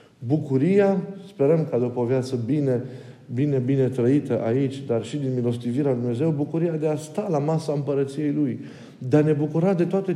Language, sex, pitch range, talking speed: Romanian, male, 125-160 Hz, 185 wpm